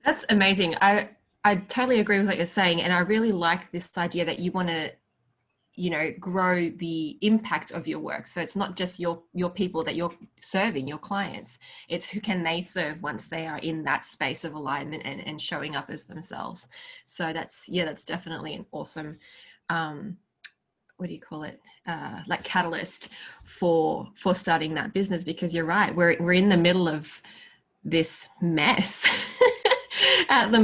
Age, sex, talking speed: 20-39, female, 180 wpm